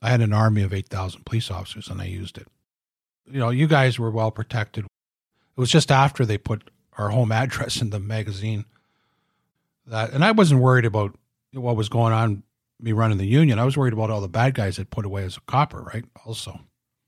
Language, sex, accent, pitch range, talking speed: English, male, American, 105-130 Hz, 215 wpm